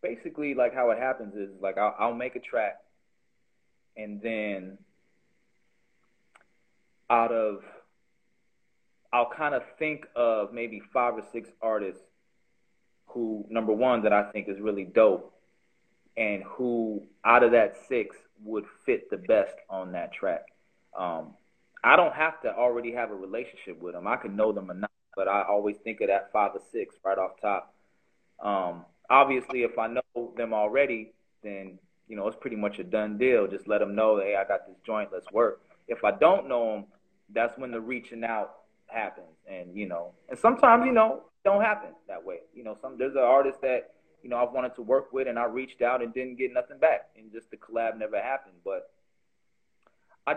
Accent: American